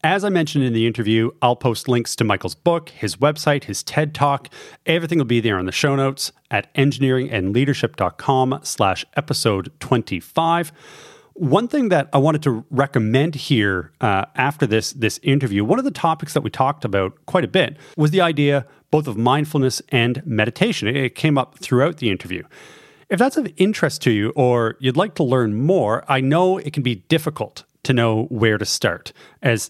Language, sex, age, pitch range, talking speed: English, male, 30-49, 115-155 Hz, 185 wpm